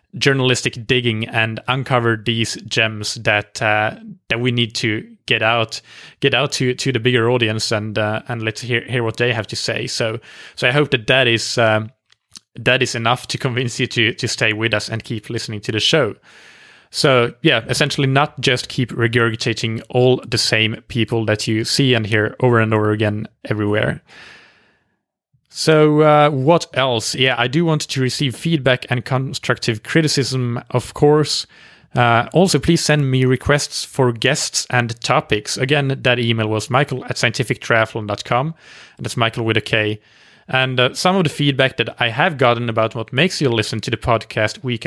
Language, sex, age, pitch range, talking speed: English, male, 20-39, 115-135 Hz, 180 wpm